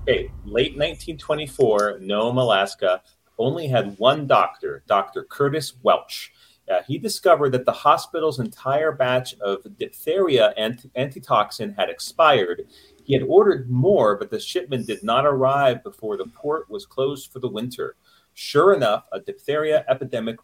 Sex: male